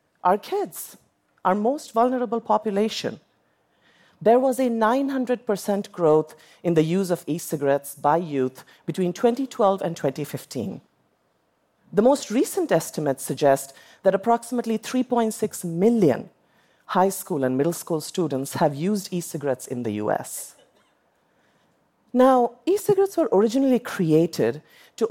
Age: 40-59